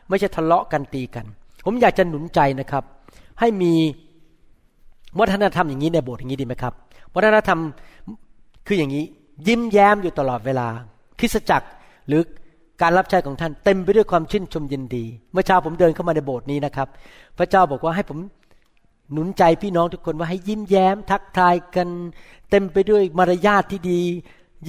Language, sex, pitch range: Thai, male, 150-195 Hz